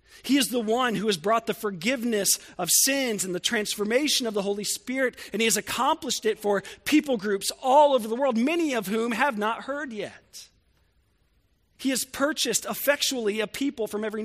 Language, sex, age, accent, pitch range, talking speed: English, male, 40-59, American, 195-290 Hz, 190 wpm